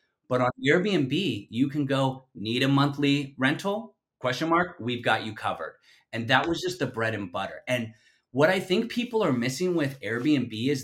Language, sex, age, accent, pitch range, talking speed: English, male, 30-49, American, 115-155 Hz, 190 wpm